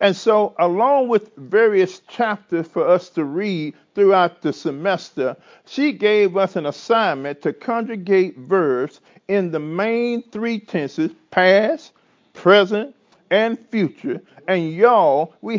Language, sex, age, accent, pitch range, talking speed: English, male, 40-59, American, 180-235 Hz, 125 wpm